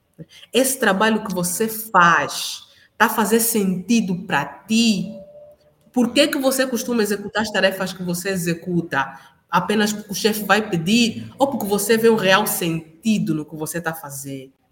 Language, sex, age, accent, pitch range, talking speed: Portuguese, female, 20-39, Brazilian, 190-235 Hz, 165 wpm